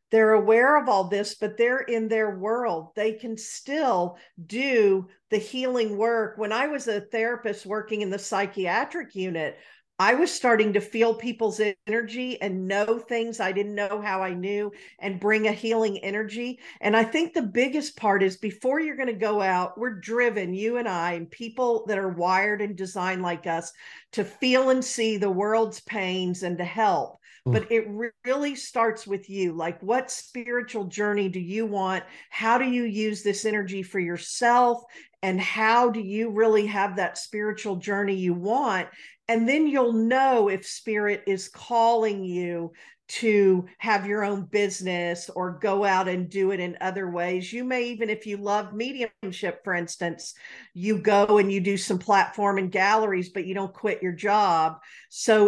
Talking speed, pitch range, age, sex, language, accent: 180 wpm, 190-230 Hz, 50-69, female, English, American